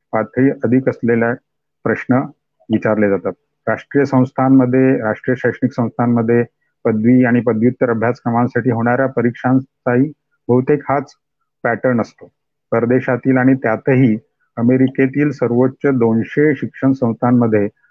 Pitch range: 115-135 Hz